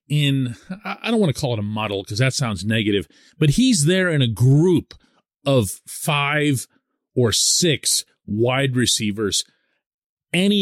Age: 40-59